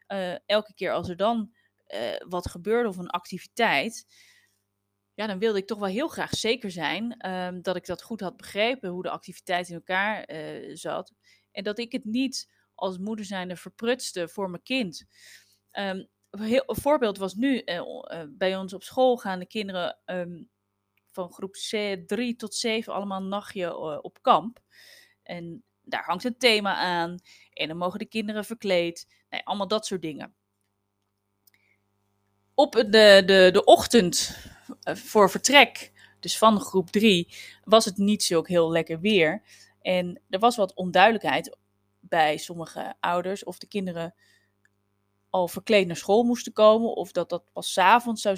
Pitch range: 170-220 Hz